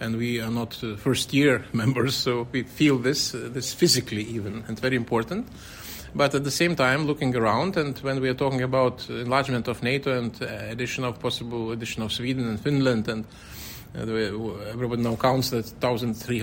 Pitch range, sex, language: 115-140 Hz, male, English